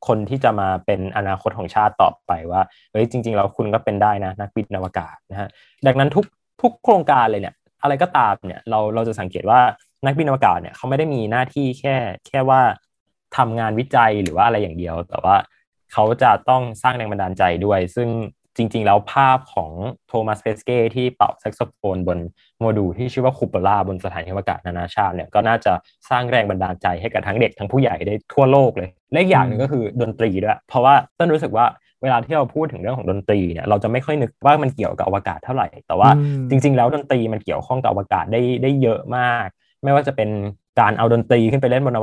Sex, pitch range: male, 95-125 Hz